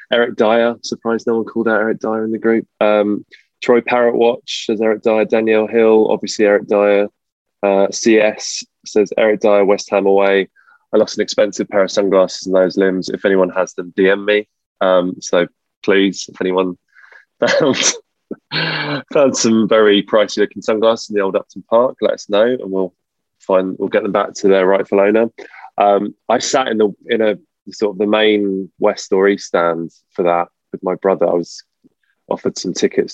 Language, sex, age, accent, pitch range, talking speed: English, male, 20-39, British, 95-110 Hz, 190 wpm